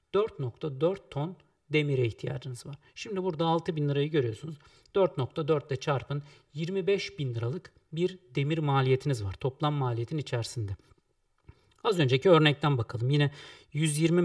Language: Turkish